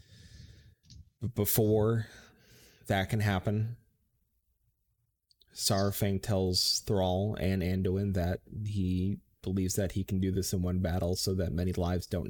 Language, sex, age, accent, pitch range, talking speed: English, male, 30-49, American, 90-110 Hz, 120 wpm